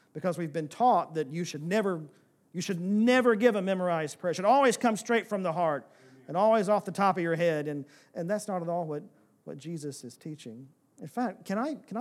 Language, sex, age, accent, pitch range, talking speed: English, male, 50-69, American, 150-210 Hz, 235 wpm